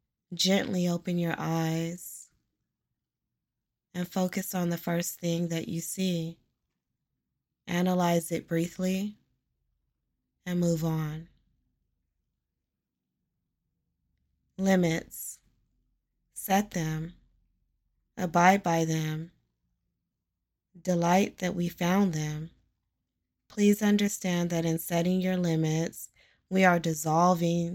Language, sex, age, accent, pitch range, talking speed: English, female, 20-39, American, 155-180 Hz, 85 wpm